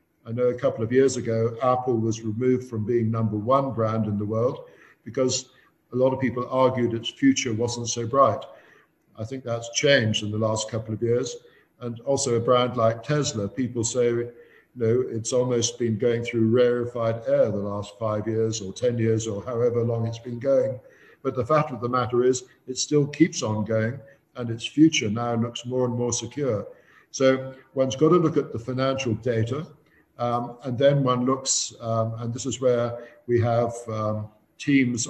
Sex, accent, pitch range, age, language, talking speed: male, British, 115-130 Hz, 50-69, English, 195 wpm